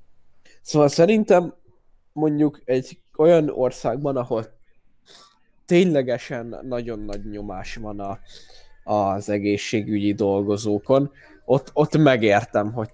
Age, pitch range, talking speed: 10-29, 110-140 Hz, 95 wpm